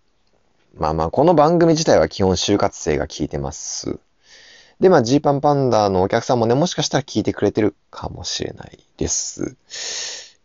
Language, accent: Japanese, native